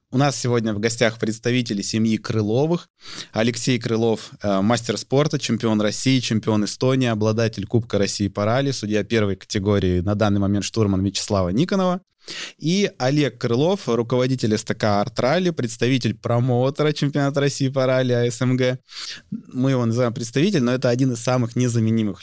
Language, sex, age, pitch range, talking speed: Russian, male, 20-39, 110-130 Hz, 145 wpm